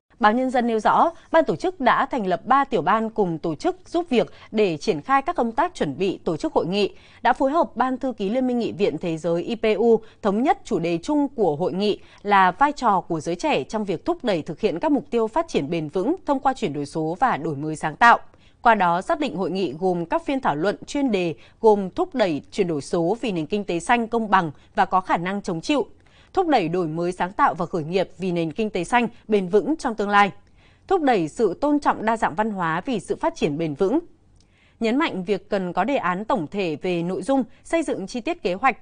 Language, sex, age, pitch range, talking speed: Vietnamese, female, 20-39, 180-270 Hz, 255 wpm